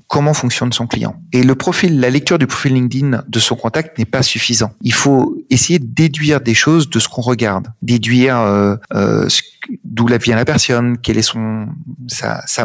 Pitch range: 120-145 Hz